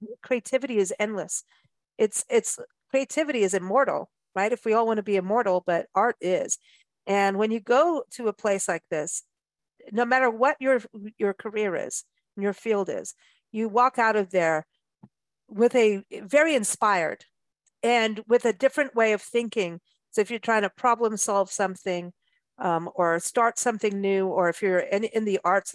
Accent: American